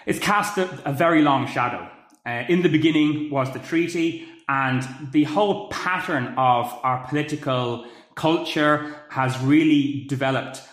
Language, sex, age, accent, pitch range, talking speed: English, male, 30-49, British, 130-155 Hz, 135 wpm